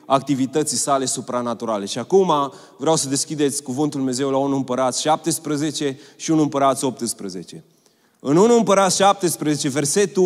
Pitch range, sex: 150-200 Hz, male